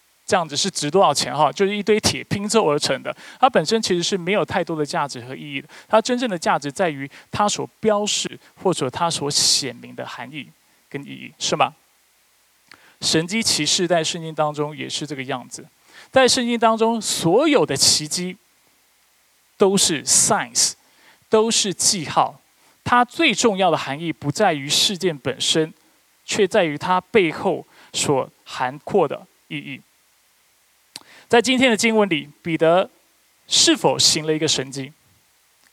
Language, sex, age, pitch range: Chinese, male, 20-39, 150-215 Hz